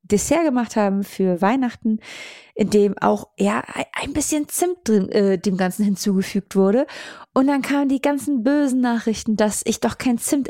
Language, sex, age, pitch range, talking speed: German, female, 30-49, 190-245 Hz, 170 wpm